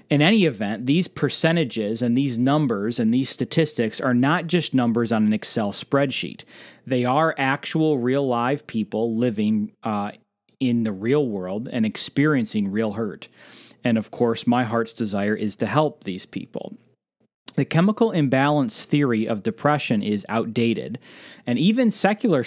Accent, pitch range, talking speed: American, 110-150 Hz, 150 wpm